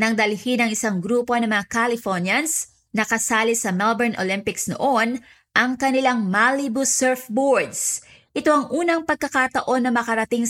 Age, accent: 20-39, native